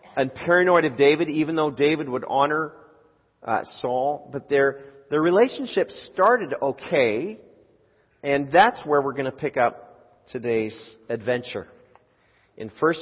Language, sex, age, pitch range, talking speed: English, male, 40-59, 125-155 Hz, 135 wpm